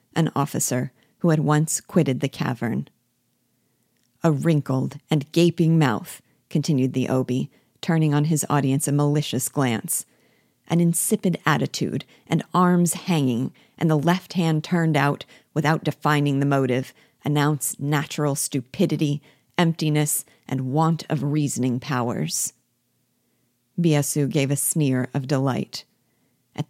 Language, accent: English, American